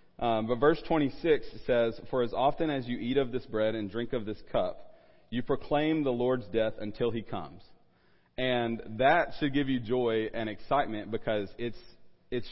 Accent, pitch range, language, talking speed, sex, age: American, 110-135 Hz, English, 180 wpm, male, 40-59